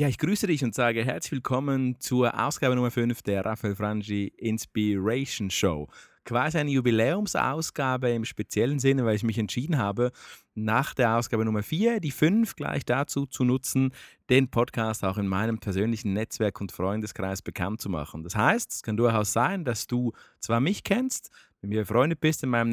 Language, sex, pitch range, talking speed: German, male, 105-130 Hz, 180 wpm